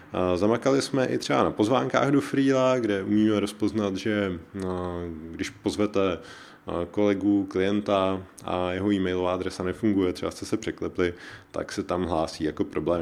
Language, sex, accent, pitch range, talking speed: Czech, male, native, 85-110 Hz, 145 wpm